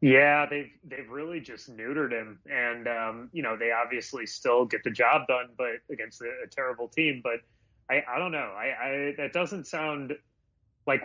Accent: American